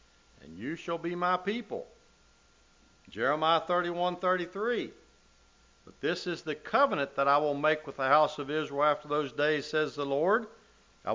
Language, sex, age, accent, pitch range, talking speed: English, male, 60-79, American, 125-180 Hz, 155 wpm